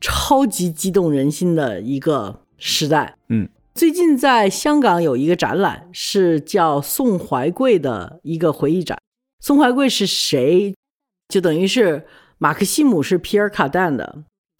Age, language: 50-69, Chinese